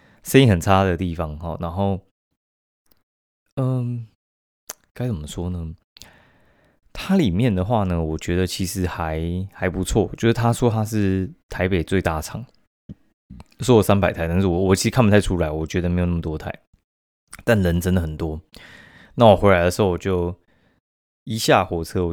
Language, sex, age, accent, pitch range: Chinese, male, 20-39, native, 85-110 Hz